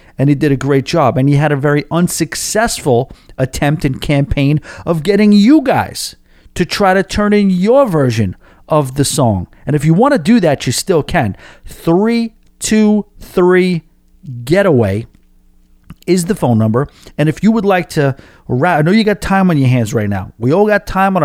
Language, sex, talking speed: English, male, 190 wpm